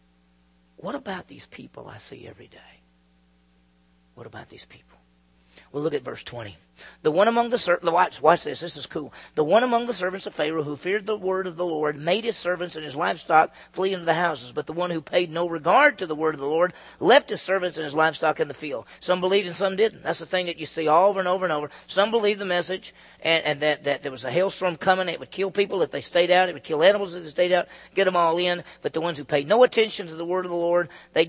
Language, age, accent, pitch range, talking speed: English, 40-59, American, 125-190 Hz, 265 wpm